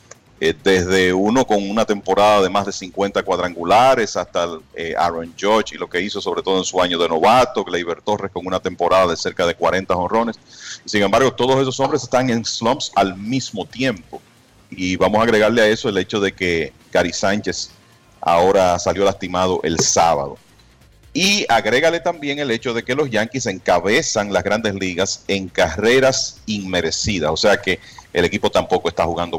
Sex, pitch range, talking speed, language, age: male, 95-125 Hz, 175 wpm, Spanish, 40-59